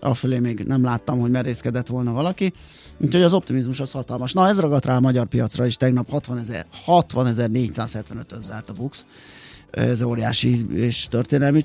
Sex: male